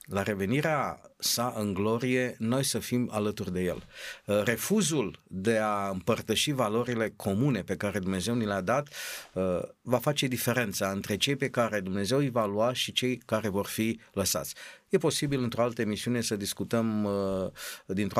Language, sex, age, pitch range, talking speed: Romanian, male, 50-69, 105-130 Hz, 160 wpm